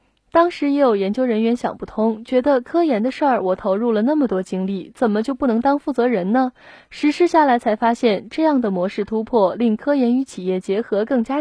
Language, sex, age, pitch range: Chinese, female, 20-39, 210-275 Hz